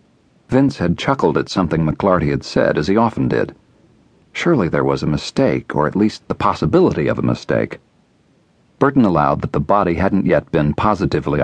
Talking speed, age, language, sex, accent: 180 wpm, 50-69, English, male, American